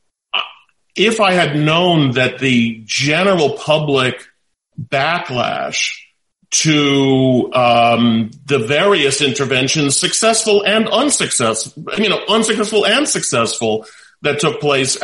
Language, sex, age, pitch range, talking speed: English, male, 40-59, 125-155 Hz, 100 wpm